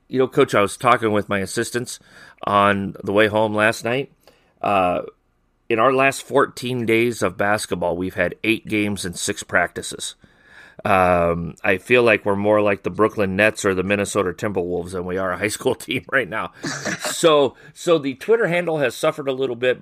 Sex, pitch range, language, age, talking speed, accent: male, 100-125 Hz, English, 30-49, 190 wpm, American